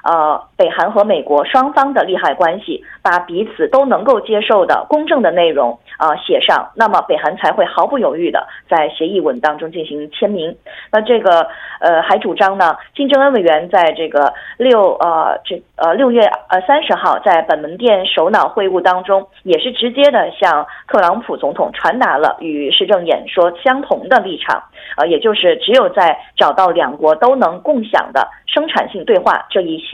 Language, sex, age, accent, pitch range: Korean, female, 20-39, Chinese, 170-275 Hz